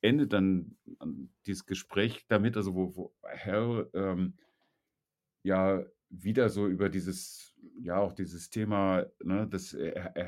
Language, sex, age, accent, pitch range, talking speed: German, male, 50-69, German, 90-100 Hz, 130 wpm